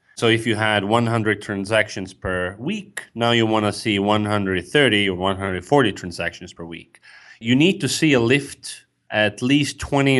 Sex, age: male, 30-49